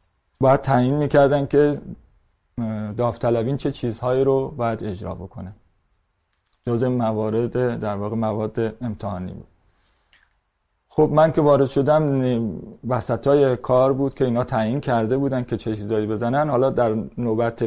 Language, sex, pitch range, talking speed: Persian, male, 110-140 Hz, 130 wpm